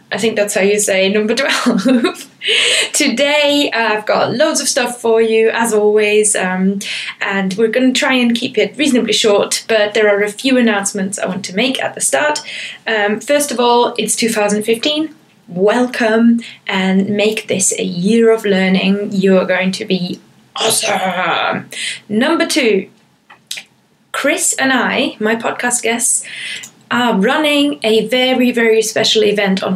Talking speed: 155 wpm